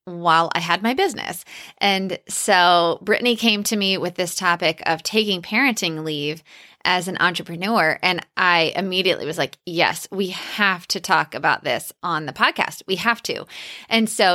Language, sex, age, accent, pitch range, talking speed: English, female, 20-39, American, 175-220 Hz, 170 wpm